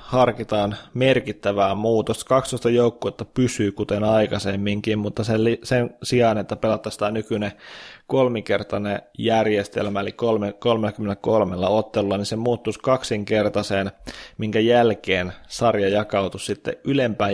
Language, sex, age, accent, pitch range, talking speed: Finnish, male, 20-39, native, 100-115 Hz, 100 wpm